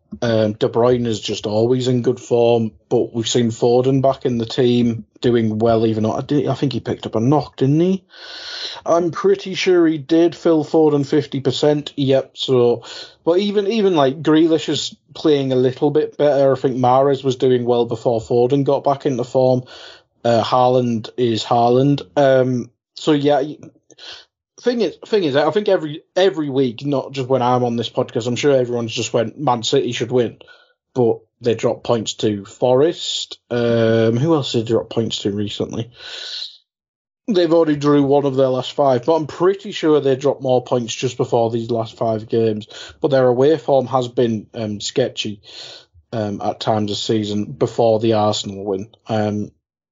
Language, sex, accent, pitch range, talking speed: English, male, British, 115-150 Hz, 180 wpm